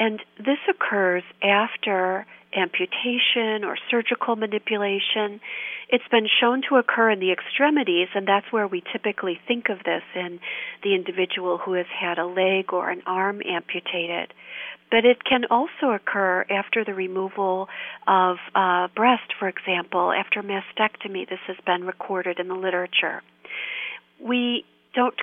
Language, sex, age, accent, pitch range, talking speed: English, female, 40-59, American, 185-240 Hz, 145 wpm